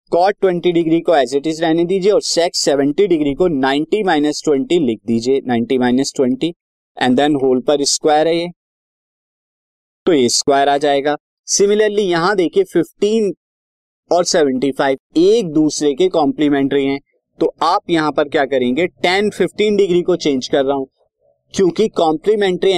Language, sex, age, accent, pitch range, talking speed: Hindi, male, 20-39, native, 135-180 Hz, 120 wpm